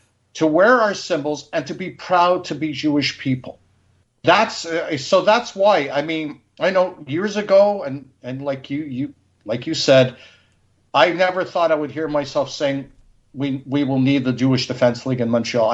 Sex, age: male, 50-69